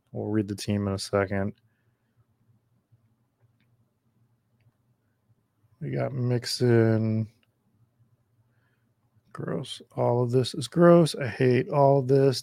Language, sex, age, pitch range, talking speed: English, male, 30-49, 110-125 Hz, 95 wpm